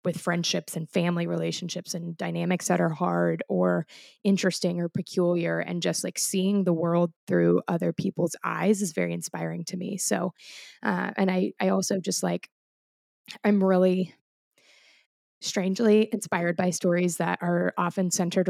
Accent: American